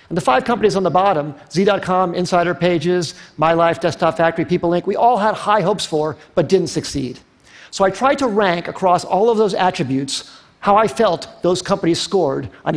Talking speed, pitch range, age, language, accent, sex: 190 wpm, 160-200 Hz, 50-69, Russian, American, male